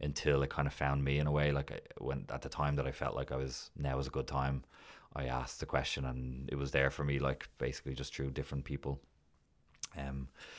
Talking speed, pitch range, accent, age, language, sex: 245 wpm, 70-75 Hz, Irish, 20-39, English, male